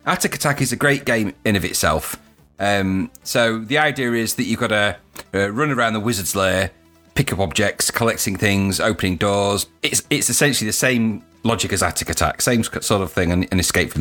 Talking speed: 205 wpm